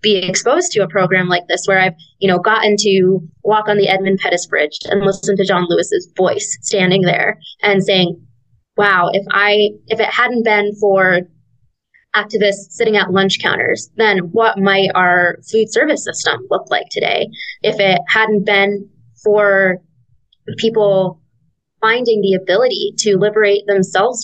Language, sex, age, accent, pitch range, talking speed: English, female, 20-39, American, 180-210 Hz, 160 wpm